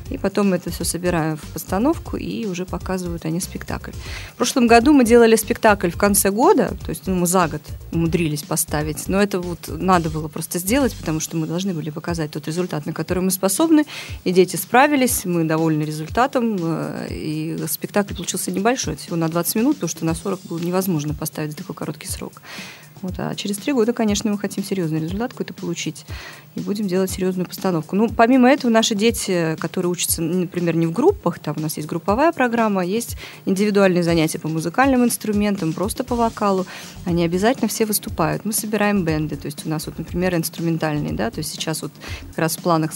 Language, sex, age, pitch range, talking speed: Russian, female, 30-49, 165-215 Hz, 195 wpm